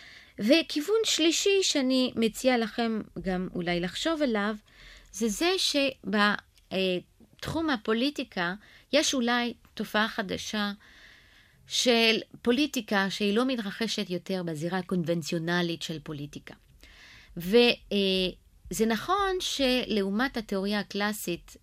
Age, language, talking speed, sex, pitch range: 30-49, Hebrew, 90 wpm, female, 170-220 Hz